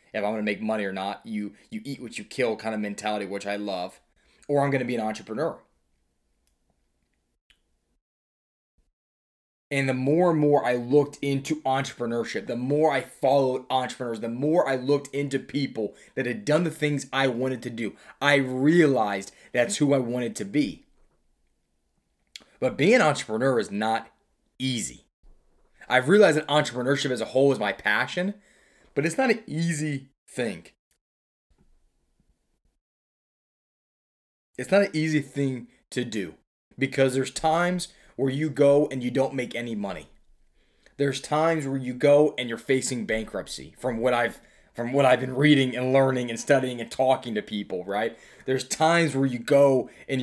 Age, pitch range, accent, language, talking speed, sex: 20-39, 110-140 Hz, American, English, 160 wpm, male